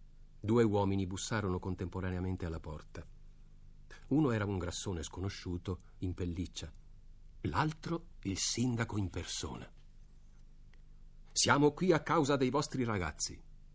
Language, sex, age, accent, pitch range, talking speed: Italian, male, 50-69, native, 90-115 Hz, 110 wpm